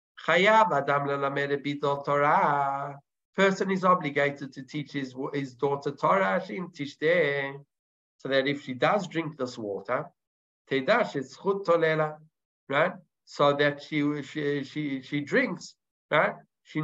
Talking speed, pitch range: 95 wpm, 145-180 Hz